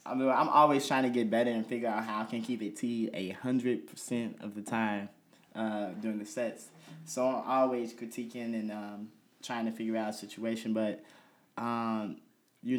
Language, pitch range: English, 105-120 Hz